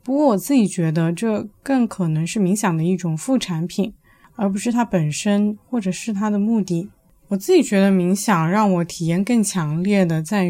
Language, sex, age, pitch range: Chinese, female, 20-39, 180-235 Hz